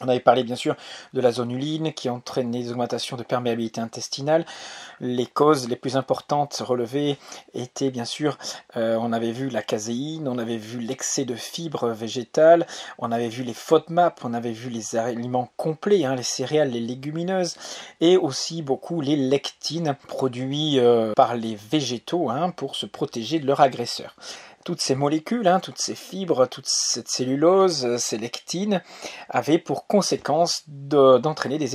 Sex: male